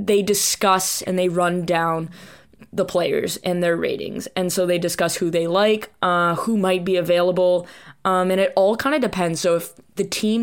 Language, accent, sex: English, American, female